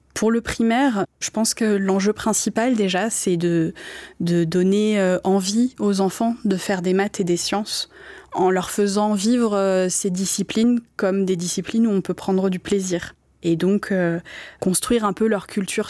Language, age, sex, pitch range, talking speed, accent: French, 20-39, female, 180-225 Hz, 170 wpm, French